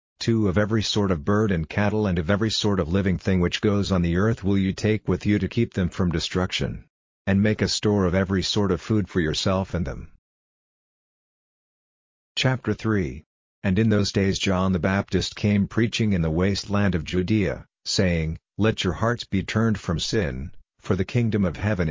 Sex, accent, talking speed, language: male, American, 195 wpm, English